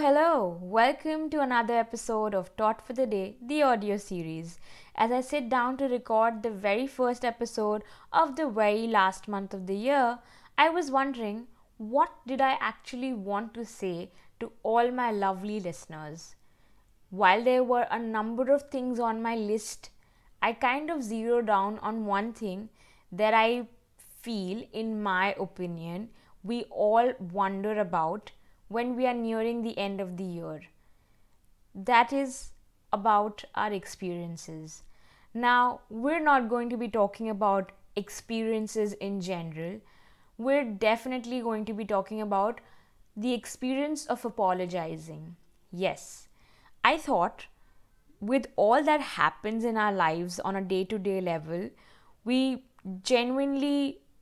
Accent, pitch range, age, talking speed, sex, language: Indian, 195-245 Hz, 20-39, 140 wpm, female, English